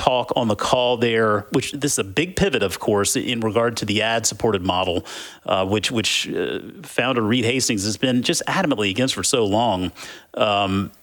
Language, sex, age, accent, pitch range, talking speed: English, male, 40-59, American, 110-145 Hz, 190 wpm